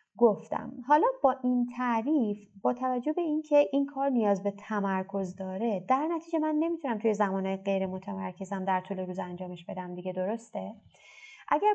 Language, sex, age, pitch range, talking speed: Persian, female, 30-49, 195-250 Hz, 160 wpm